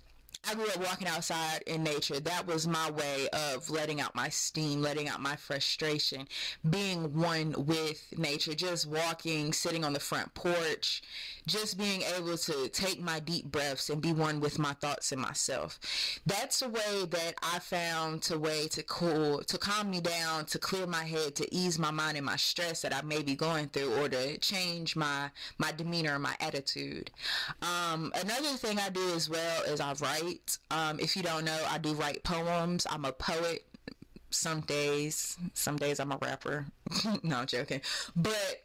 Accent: American